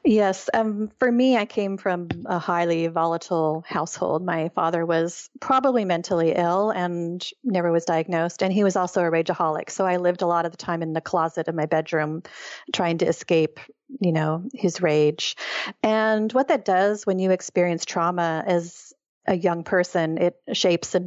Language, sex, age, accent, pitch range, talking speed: English, female, 40-59, American, 165-205 Hz, 180 wpm